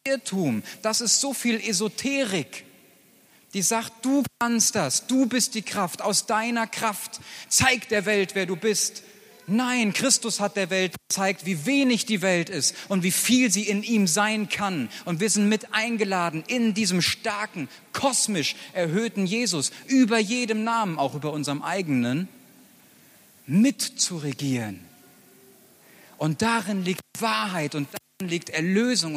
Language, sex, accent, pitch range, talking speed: German, male, German, 165-220 Hz, 150 wpm